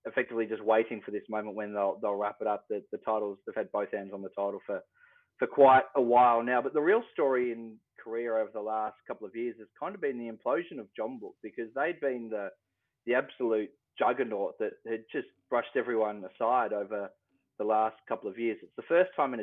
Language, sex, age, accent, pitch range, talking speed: English, male, 20-39, Australian, 110-125 Hz, 220 wpm